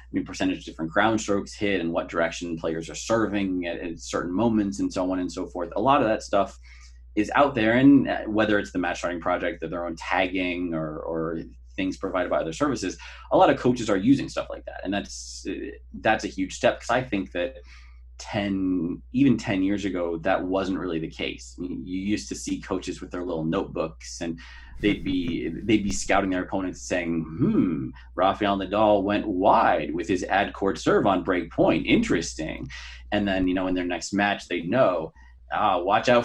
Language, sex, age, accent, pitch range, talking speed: English, male, 30-49, American, 80-105 Hz, 205 wpm